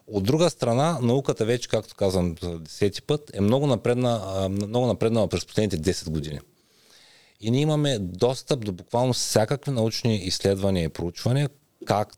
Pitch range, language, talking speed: 95-135 Hz, Bulgarian, 150 wpm